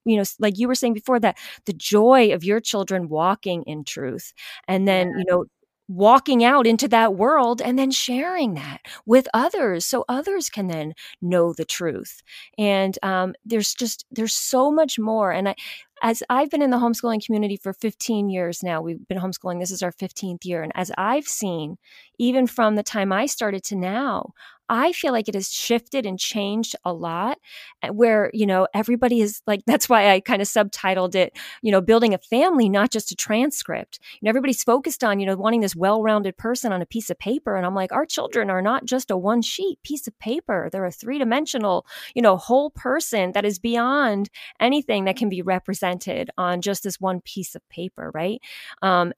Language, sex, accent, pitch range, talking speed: English, female, American, 185-240 Hz, 200 wpm